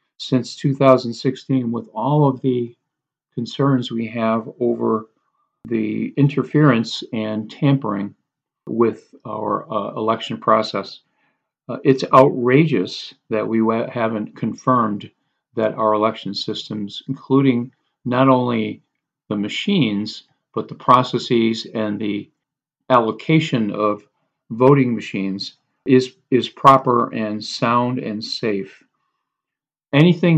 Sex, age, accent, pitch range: male, 50-69, American, 110-135 Hz